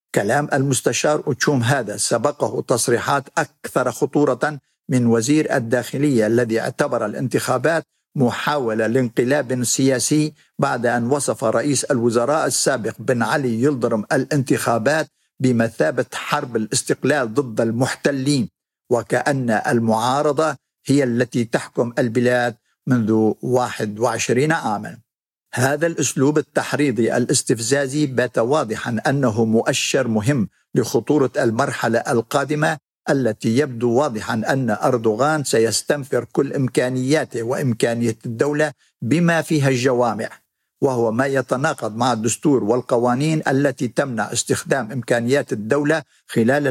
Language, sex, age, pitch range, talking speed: Arabic, male, 60-79, 115-145 Hz, 100 wpm